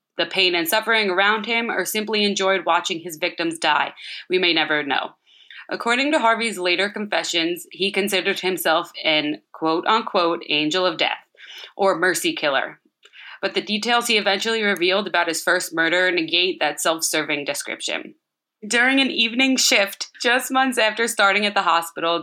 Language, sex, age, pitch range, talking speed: English, female, 20-39, 170-205 Hz, 155 wpm